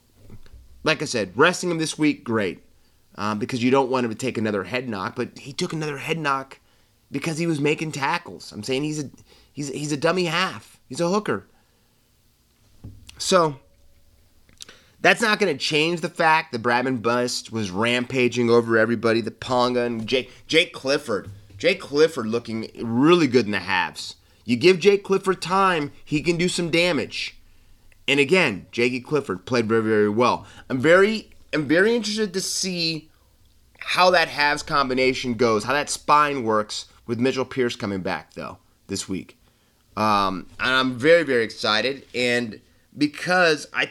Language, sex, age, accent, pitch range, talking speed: English, male, 30-49, American, 110-150 Hz, 165 wpm